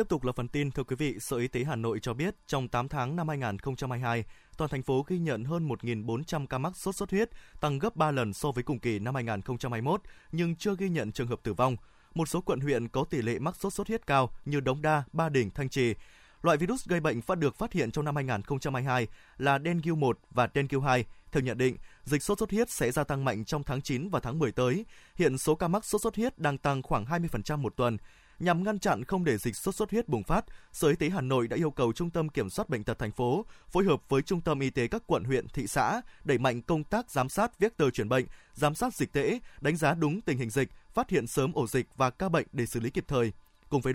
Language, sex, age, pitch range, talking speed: Vietnamese, male, 20-39, 125-170 Hz, 265 wpm